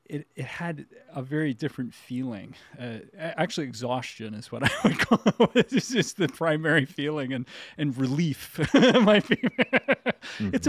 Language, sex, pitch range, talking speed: English, male, 120-155 Hz, 140 wpm